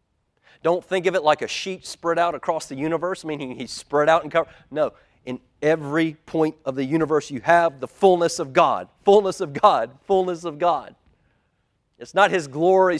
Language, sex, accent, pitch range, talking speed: English, male, American, 135-180 Hz, 190 wpm